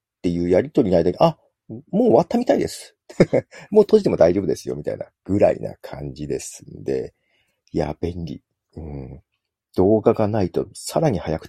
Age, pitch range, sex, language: 40-59, 85-140 Hz, male, Japanese